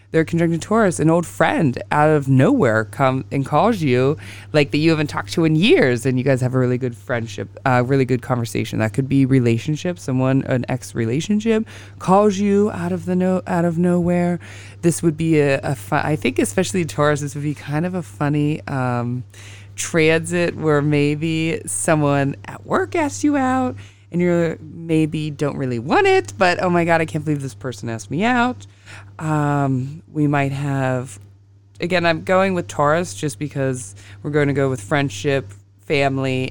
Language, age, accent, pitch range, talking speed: English, 20-39, American, 125-165 Hz, 185 wpm